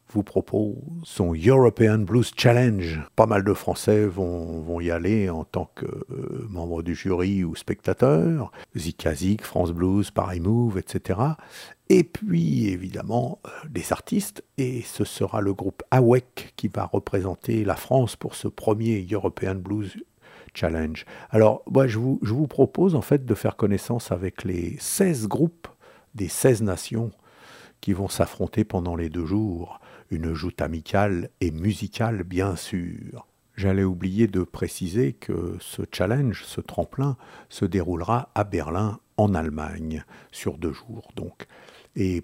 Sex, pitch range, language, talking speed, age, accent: male, 90-115 Hz, French, 150 wpm, 60-79, French